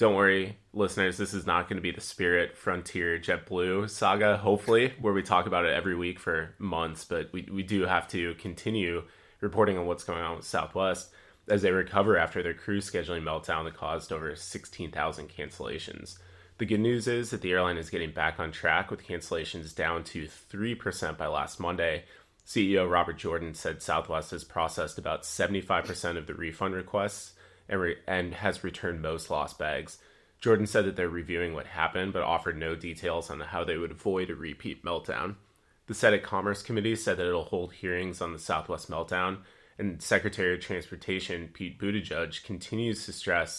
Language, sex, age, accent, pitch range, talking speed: English, male, 20-39, American, 85-100 Hz, 180 wpm